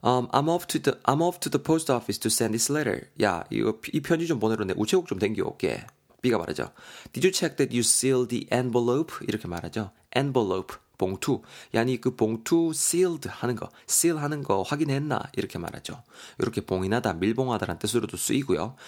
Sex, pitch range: male, 105-140 Hz